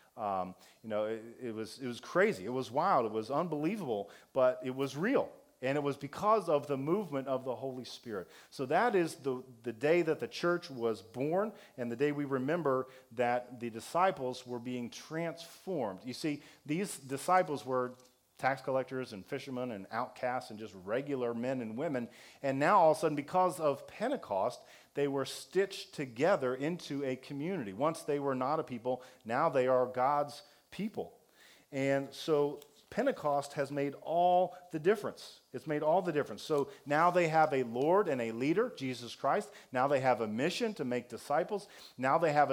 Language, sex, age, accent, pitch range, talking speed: English, male, 40-59, American, 130-170 Hz, 185 wpm